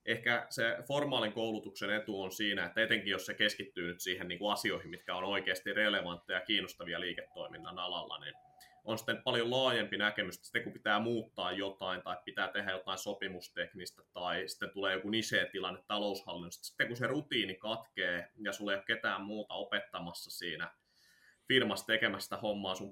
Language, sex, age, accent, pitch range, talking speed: Finnish, male, 20-39, native, 95-110 Hz, 170 wpm